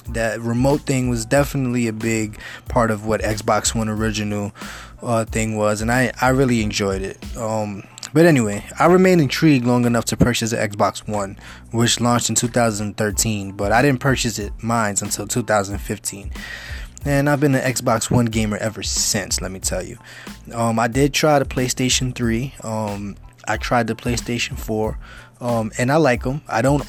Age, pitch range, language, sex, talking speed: 20-39, 110-125 Hz, English, male, 180 wpm